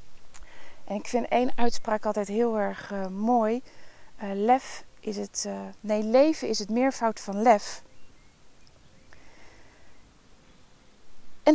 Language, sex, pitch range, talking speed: Dutch, female, 215-280 Hz, 120 wpm